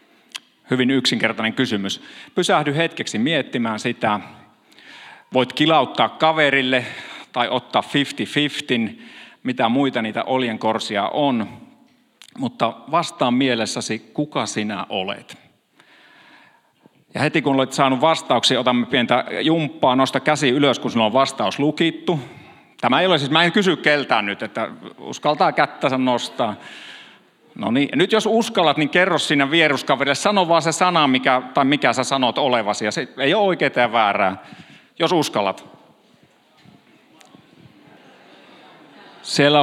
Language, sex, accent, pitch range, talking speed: Finnish, male, native, 125-160 Hz, 125 wpm